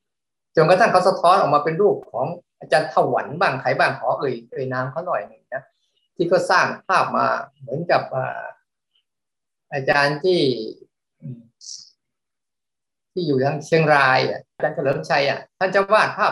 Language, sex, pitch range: Thai, male, 135-185 Hz